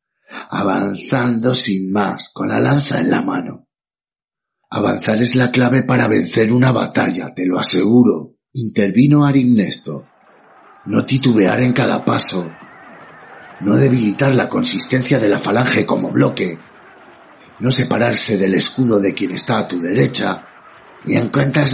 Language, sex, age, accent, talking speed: Spanish, male, 50-69, Spanish, 135 wpm